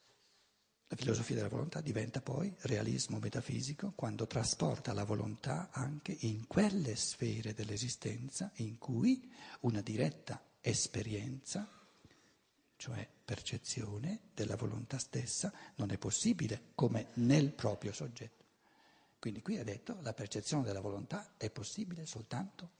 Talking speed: 120 wpm